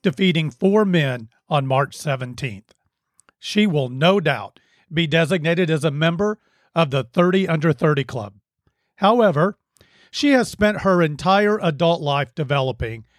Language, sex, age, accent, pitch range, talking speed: English, male, 40-59, American, 150-190 Hz, 135 wpm